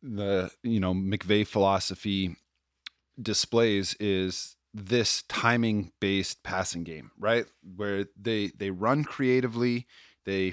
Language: English